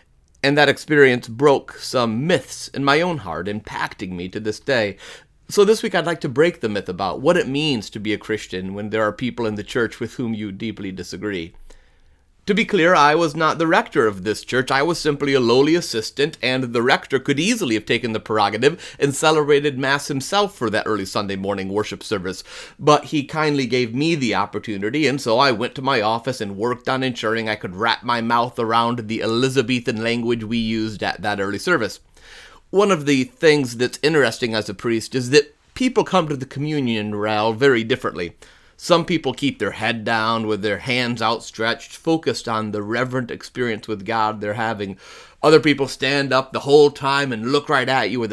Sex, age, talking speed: male, 30-49, 205 wpm